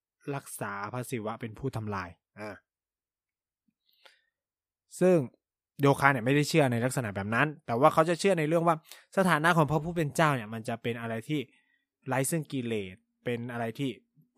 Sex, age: male, 20-39